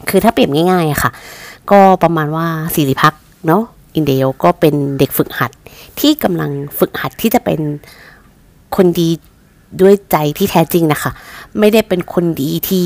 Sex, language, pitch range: female, Thai, 150-195 Hz